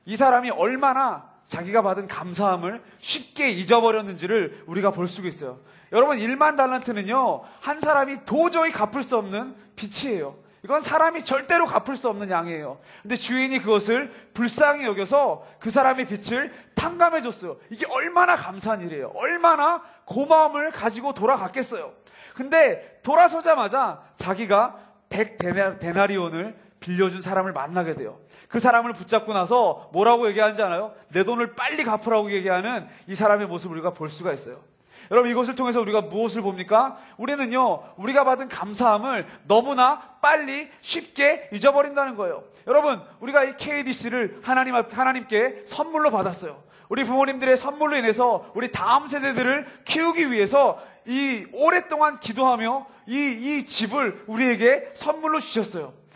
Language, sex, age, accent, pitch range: Korean, male, 30-49, native, 210-285 Hz